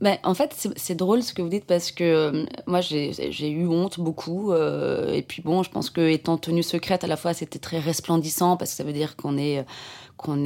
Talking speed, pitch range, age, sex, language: 245 wpm, 150-175 Hz, 20-39, female, French